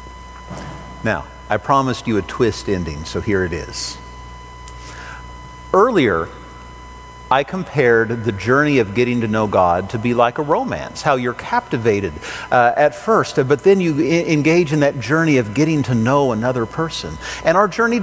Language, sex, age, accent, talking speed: English, male, 50-69, American, 160 wpm